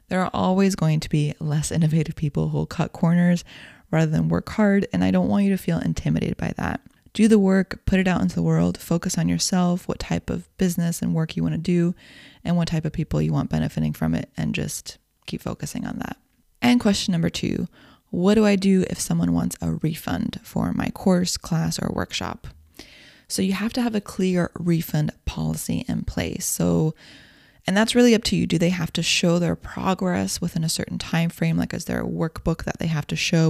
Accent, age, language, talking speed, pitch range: American, 20-39, English, 220 wpm, 150-190 Hz